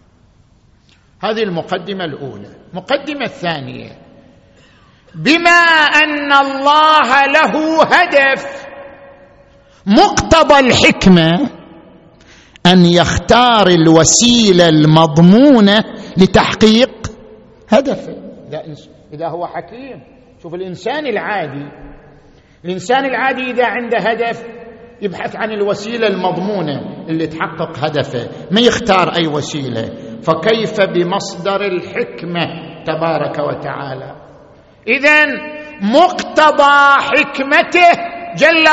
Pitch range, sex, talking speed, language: 180-275 Hz, male, 75 wpm, Arabic